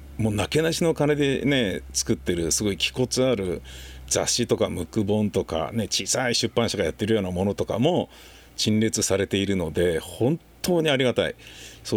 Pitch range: 95-120 Hz